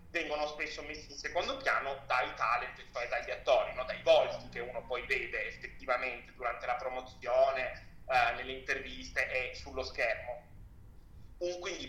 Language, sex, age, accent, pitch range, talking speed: Italian, male, 30-49, native, 145-195 Hz, 145 wpm